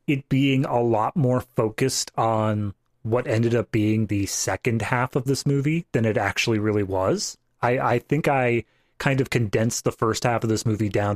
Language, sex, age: English, male, 30-49